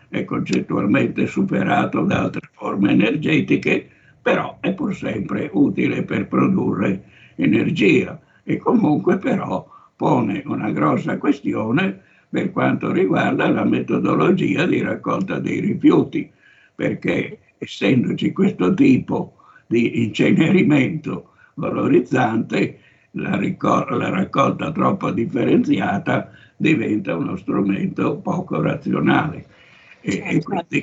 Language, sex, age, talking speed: Italian, male, 60-79, 95 wpm